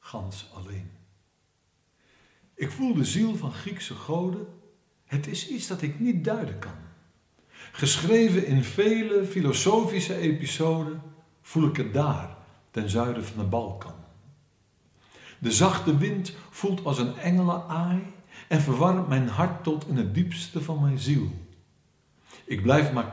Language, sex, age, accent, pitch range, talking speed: Dutch, male, 60-79, Dutch, 110-170 Hz, 135 wpm